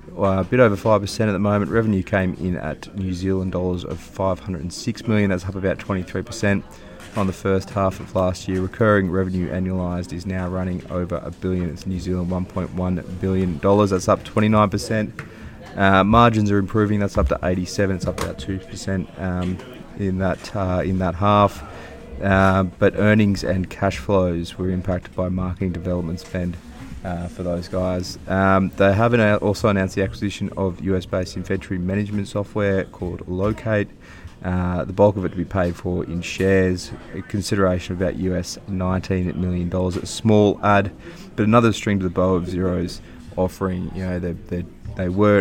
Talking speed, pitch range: 175 wpm, 90-100 Hz